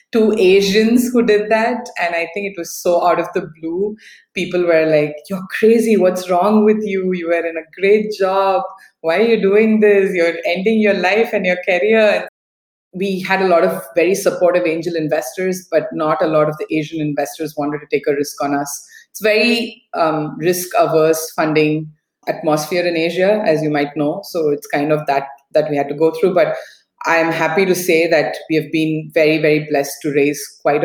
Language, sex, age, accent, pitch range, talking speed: English, female, 20-39, Indian, 155-195 Hz, 205 wpm